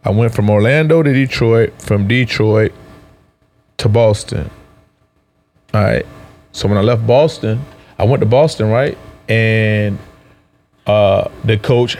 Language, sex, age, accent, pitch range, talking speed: English, male, 20-39, American, 105-120 Hz, 130 wpm